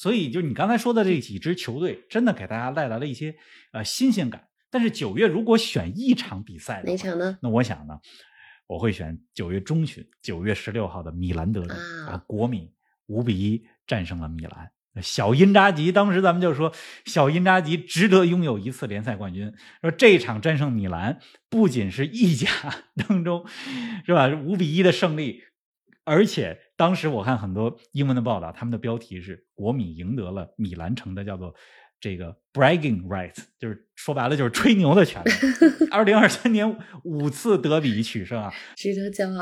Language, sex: Chinese, male